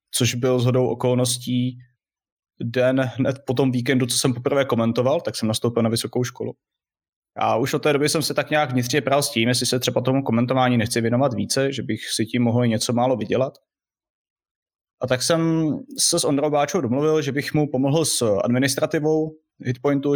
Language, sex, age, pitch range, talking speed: Slovak, male, 20-39, 120-135 Hz, 190 wpm